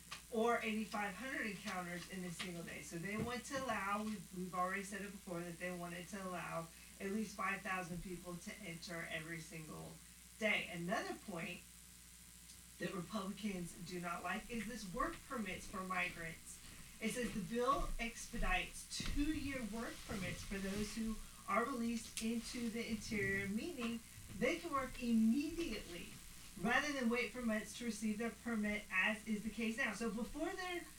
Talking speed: 160 wpm